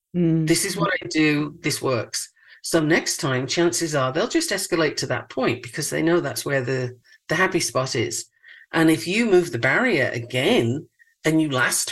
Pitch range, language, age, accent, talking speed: 140-180 Hz, English, 50-69, British, 190 wpm